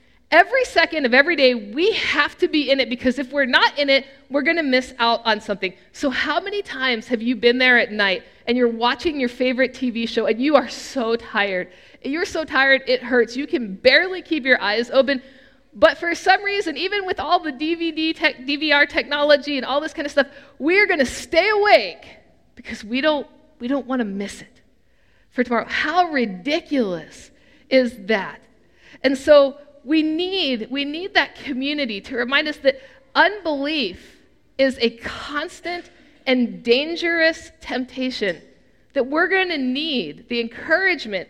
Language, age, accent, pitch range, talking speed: English, 50-69, American, 240-315 Hz, 175 wpm